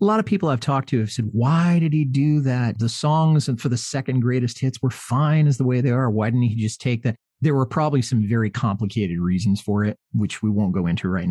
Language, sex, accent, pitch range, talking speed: English, male, American, 105-130 Hz, 260 wpm